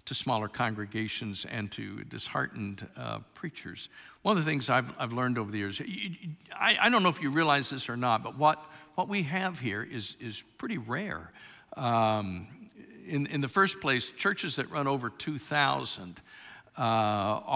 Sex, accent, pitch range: male, American, 105-150 Hz